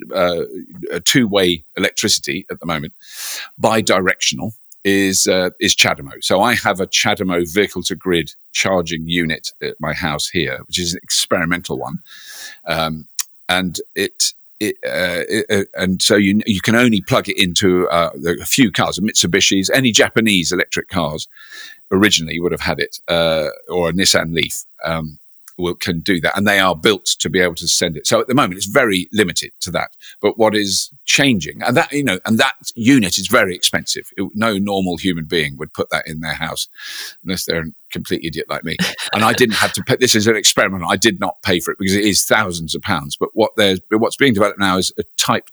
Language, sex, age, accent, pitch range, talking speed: English, male, 50-69, British, 85-100 Hz, 200 wpm